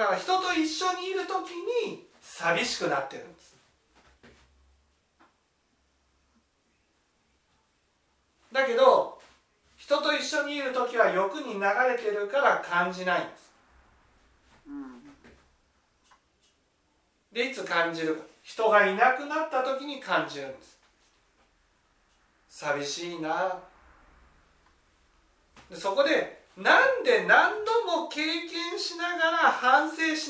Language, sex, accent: Japanese, male, native